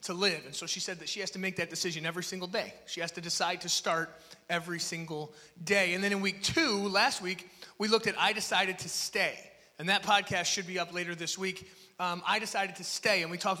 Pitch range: 170-185 Hz